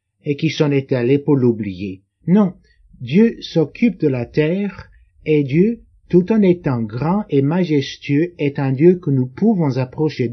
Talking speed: 165 wpm